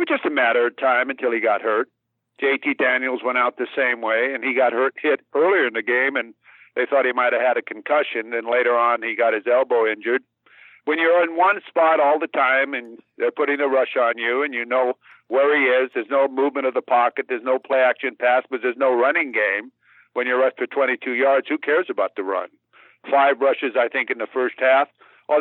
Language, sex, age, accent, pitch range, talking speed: English, male, 50-69, American, 130-170 Hz, 235 wpm